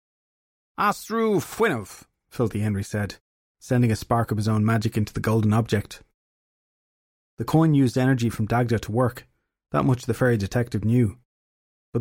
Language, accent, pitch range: English, Irish, 105-130 Hz